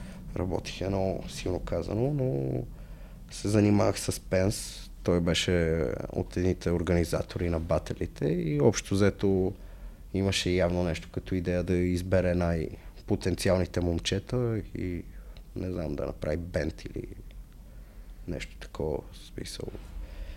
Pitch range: 85-105 Hz